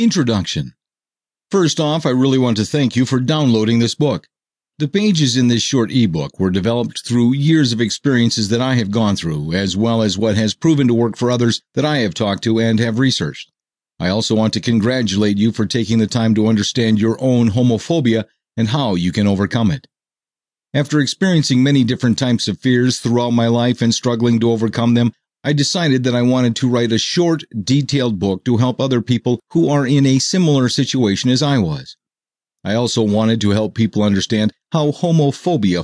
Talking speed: 195 wpm